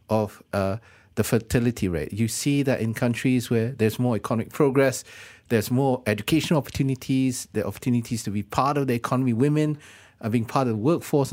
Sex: male